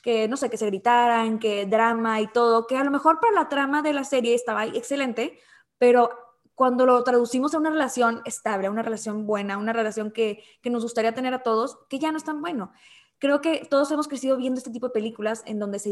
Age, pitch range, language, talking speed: 20-39, 220-265 Hz, English, 240 wpm